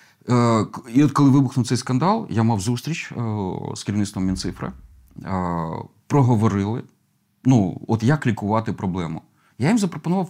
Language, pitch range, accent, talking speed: Ukrainian, 105-145 Hz, native, 140 wpm